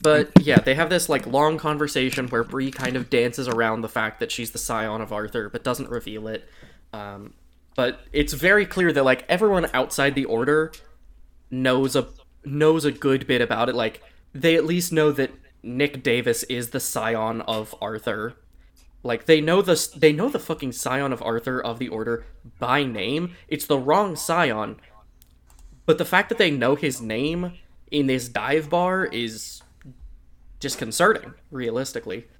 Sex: male